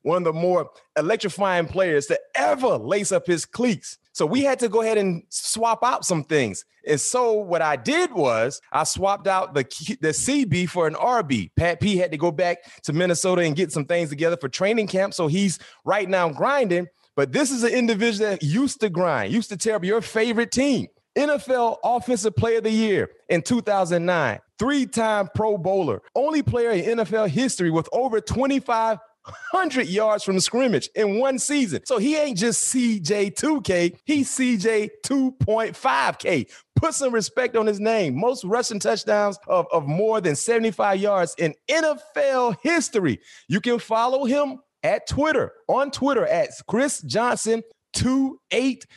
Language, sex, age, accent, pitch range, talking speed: English, male, 30-49, American, 180-245 Hz, 170 wpm